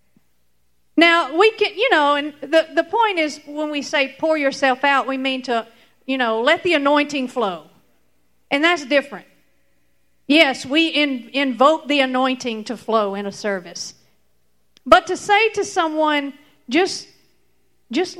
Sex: female